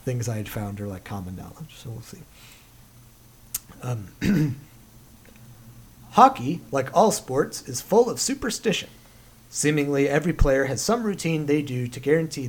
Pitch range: 120-155 Hz